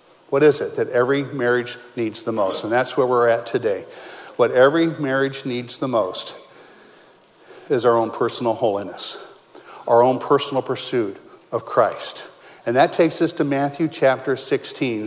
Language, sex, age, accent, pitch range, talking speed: English, male, 50-69, American, 125-165 Hz, 160 wpm